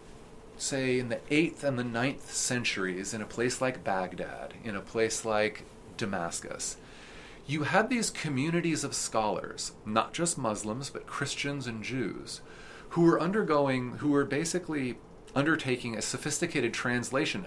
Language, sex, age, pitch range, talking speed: English, male, 40-59, 100-135 Hz, 140 wpm